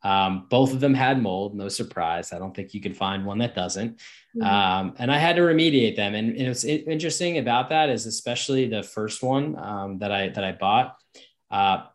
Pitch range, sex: 100-125 Hz, male